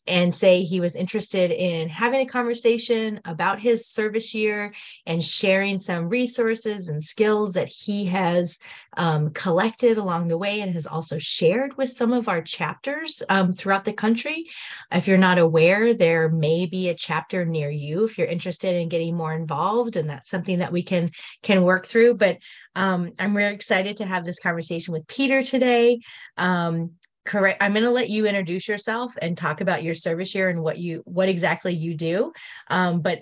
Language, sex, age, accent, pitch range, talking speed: English, female, 30-49, American, 165-215 Hz, 185 wpm